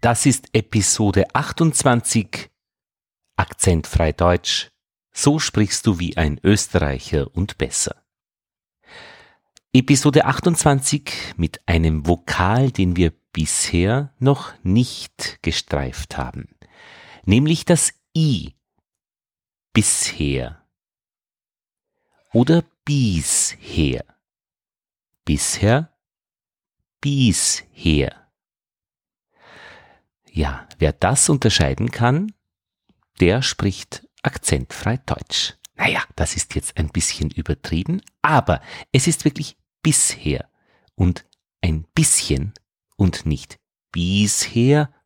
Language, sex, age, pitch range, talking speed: German, male, 50-69, 85-135 Hz, 80 wpm